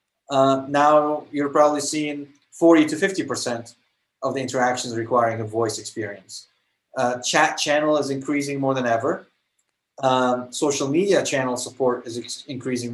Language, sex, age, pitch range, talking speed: English, male, 30-49, 125-150 Hz, 140 wpm